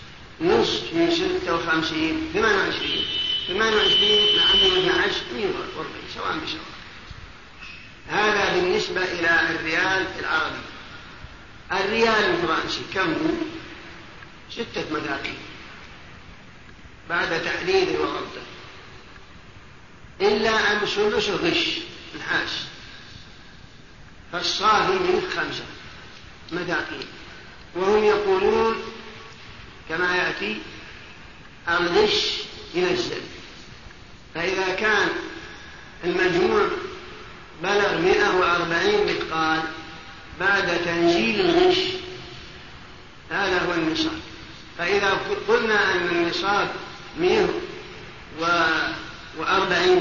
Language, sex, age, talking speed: Arabic, male, 50-69, 75 wpm